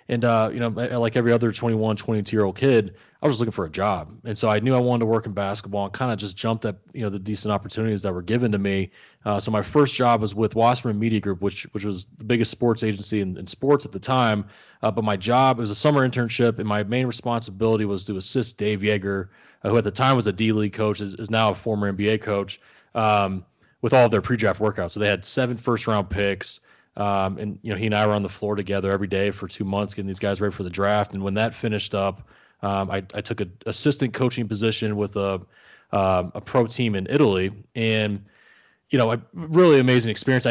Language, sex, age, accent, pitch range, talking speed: English, male, 20-39, American, 100-115 Hz, 245 wpm